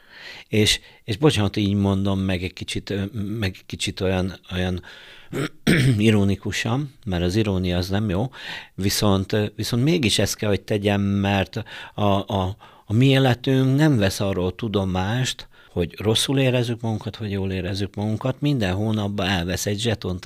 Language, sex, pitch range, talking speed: Hungarian, male, 100-125 Hz, 150 wpm